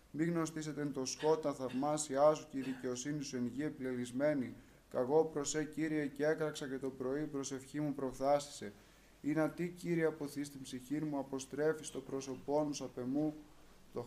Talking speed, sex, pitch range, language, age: 160 wpm, male, 135-155 Hz, Greek, 20-39